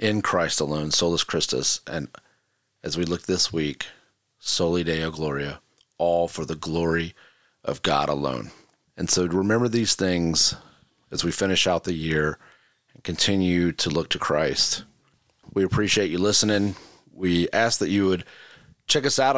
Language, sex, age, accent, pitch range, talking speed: English, male, 30-49, American, 85-105 Hz, 155 wpm